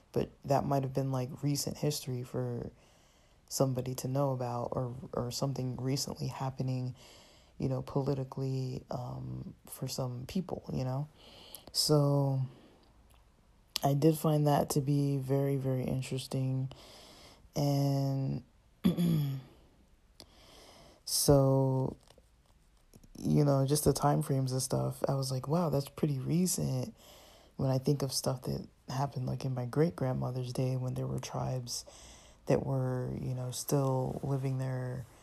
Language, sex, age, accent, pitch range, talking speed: English, male, 20-39, American, 125-140 Hz, 130 wpm